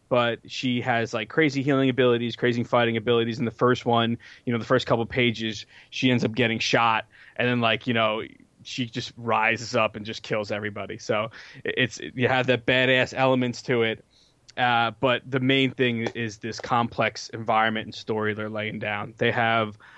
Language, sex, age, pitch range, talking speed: English, male, 20-39, 115-130 Hz, 190 wpm